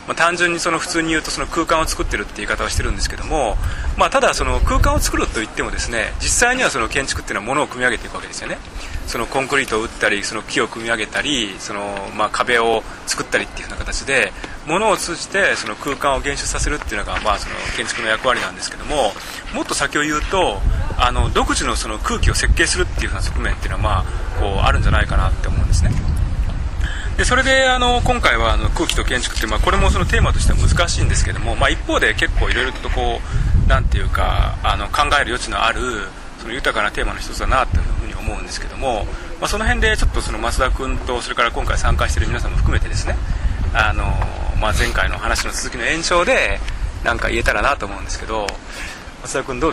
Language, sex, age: Japanese, male, 20-39